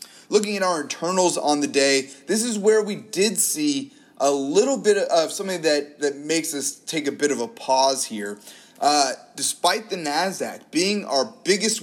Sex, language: male, English